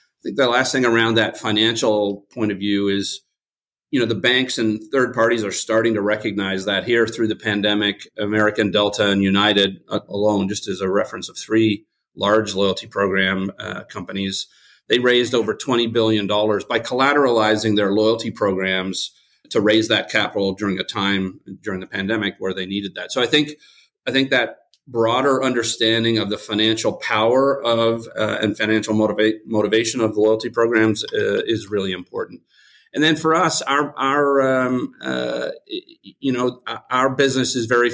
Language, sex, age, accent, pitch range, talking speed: English, male, 40-59, American, 105-120 Hz, 170 wpm